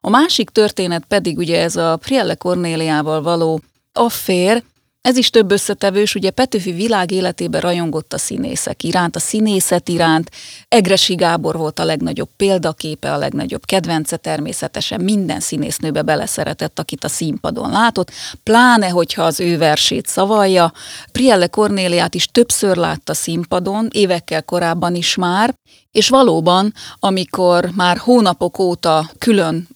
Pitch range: 170-215 Hz